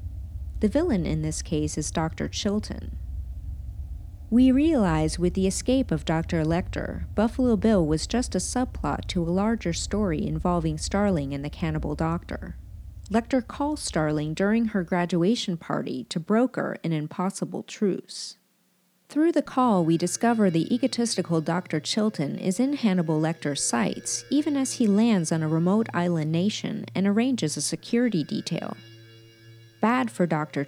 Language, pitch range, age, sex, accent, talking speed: English, 155-225 Hz, 40-59, female, American, 145 wpm